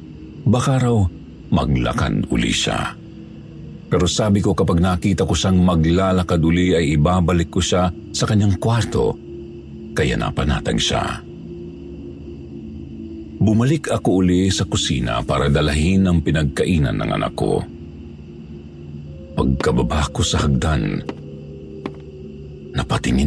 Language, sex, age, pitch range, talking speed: Filipino, male, 50-69, 75-110 Hz, 105 wpm